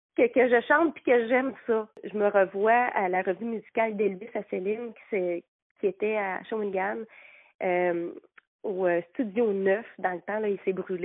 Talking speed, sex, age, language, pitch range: 190 wpm, female, 30-49, French, 205-265 Hz